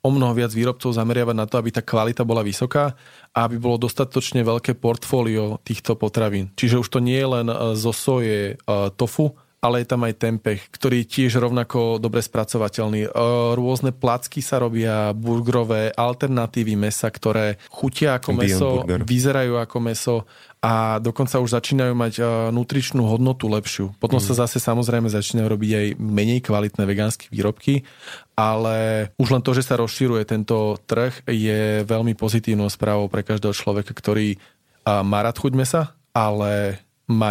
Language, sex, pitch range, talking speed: Slovak, male, 110-130 Hz, 155 wpm